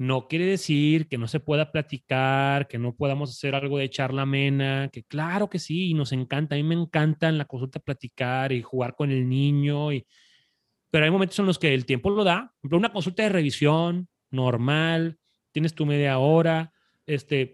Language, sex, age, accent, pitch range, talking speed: Spanish, male, 30-49, Mexican, 135-170 Hz, 200 wpm